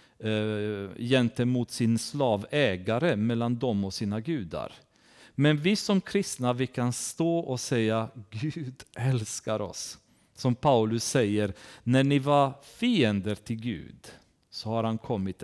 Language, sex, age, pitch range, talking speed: Swedish, male, 40-59, 110-150 Hz, 130 wpm